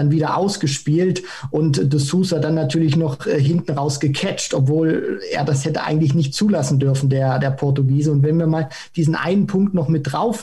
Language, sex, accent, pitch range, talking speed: German, male, German, 150-180 Hz, 195 wpm